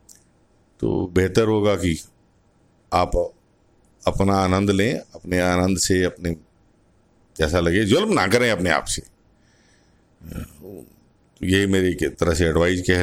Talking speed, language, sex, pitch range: 130 wpm, Hindi, male, 85-110 Hz